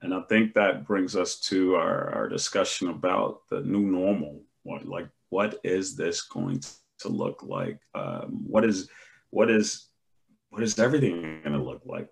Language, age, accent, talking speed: English, 40-59, American, 170 wpm